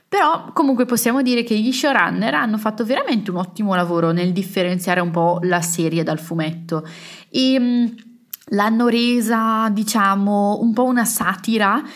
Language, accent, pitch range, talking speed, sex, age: Italian, native, 175-225 Hz, 145 wpm, female, 20-39